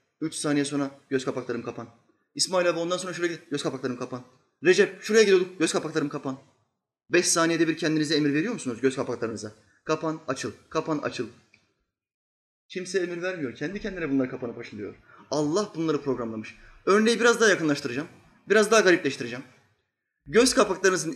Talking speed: 155 wpm